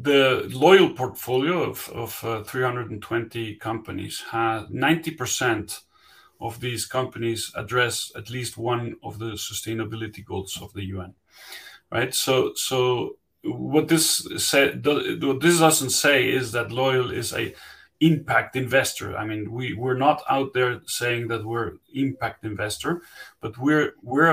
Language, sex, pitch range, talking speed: English, male, 115-135 Hz, 140 wpm